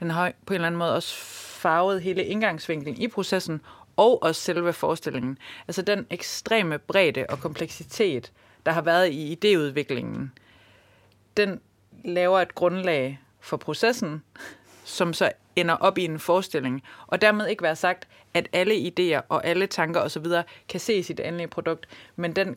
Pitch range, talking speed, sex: 150-185 Hz, 160 wpm, female